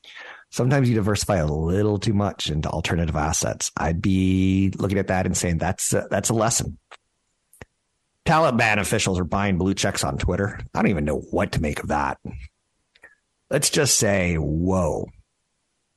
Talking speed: 160 wpm